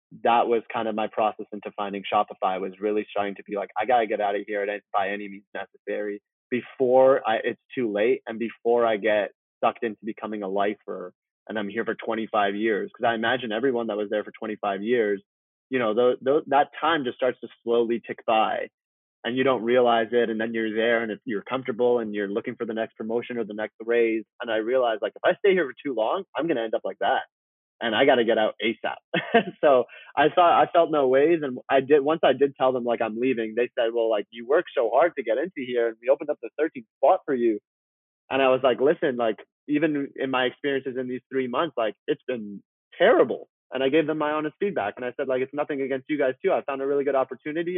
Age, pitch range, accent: 20-39, 105-135 Hz, American